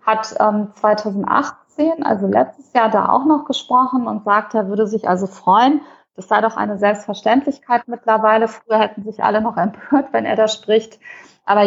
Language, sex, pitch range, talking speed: German, female, 210-260 Hz, 175 wpm